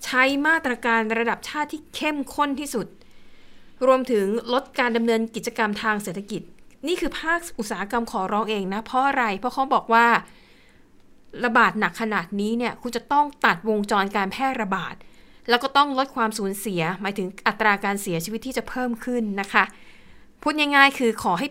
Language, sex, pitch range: Thai, female, 195-240 Hz